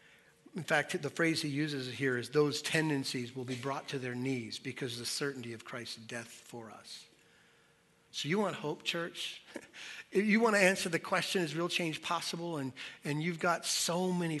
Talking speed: 195 wpm